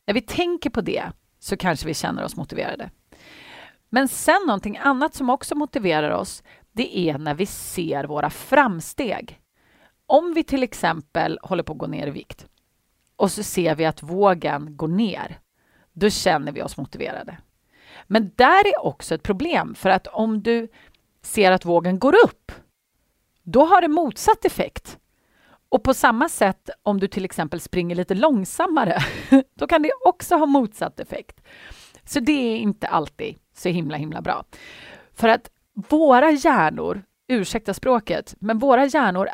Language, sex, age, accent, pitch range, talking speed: Swedish, female, 30-49, native, 180-290 Hz, 160 wpm